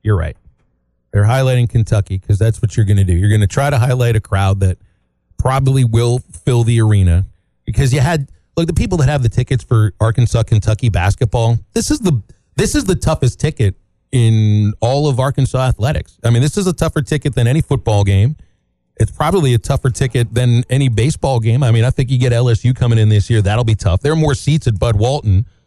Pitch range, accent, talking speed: 105-135 Hz, American, 215 wpm